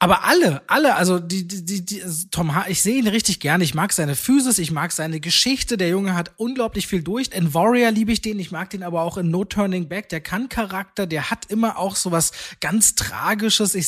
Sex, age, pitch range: male, 20-39, 155-195 Hz